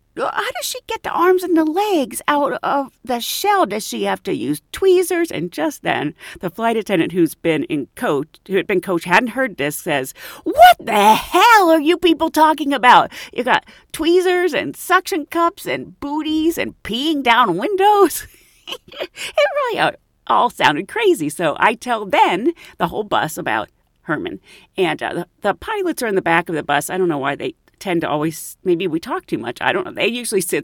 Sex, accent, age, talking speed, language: female, American, 40-59, 200 wpm, English